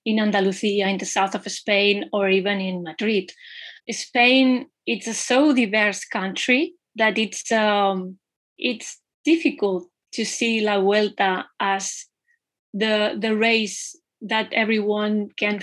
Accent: Spanish